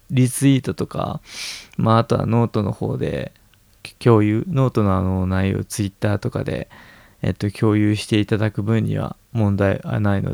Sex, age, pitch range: male, 20-39, 105-130 Hz